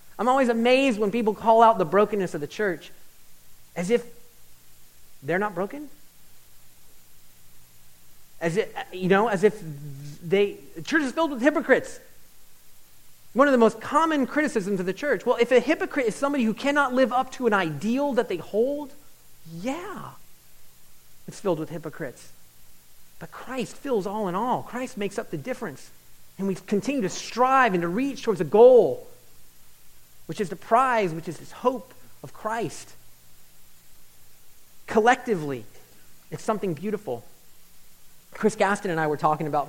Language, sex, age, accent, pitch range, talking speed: English, male, 30-49, American, 150-240 Hz, 155 wpm